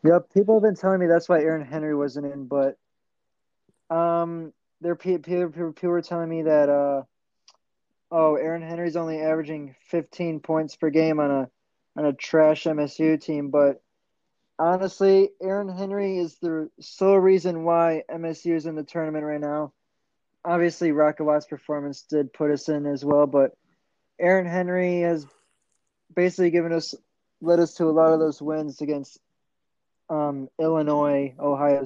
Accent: American